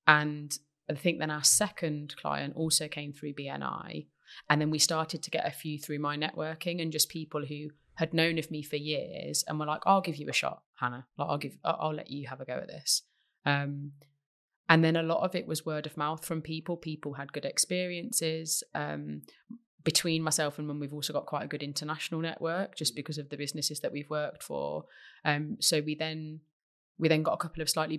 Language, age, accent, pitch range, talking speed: English, 30-49, British, 145-165 Hz, 215 wpm